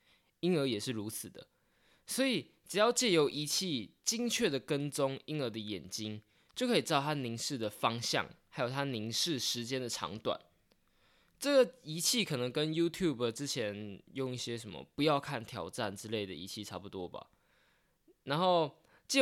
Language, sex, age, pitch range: Chinese, male, 20-39, 110-155 Hz